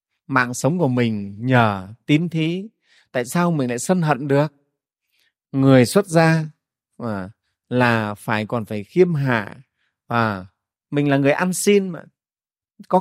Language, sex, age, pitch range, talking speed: Vietnamese, male, 30-49, 115-155 Hz, 145 wpm